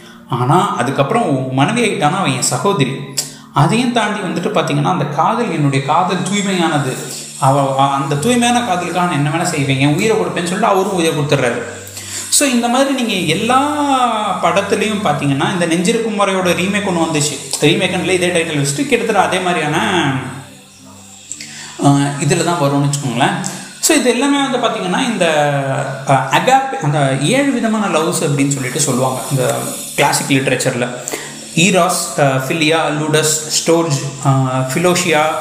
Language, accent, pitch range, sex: Tamil, native, 140-205 Hz, male